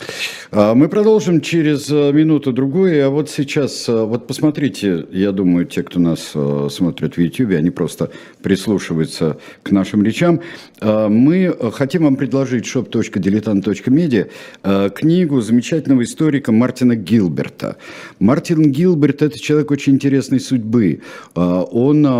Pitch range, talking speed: 95-140 Hz, 110 wpm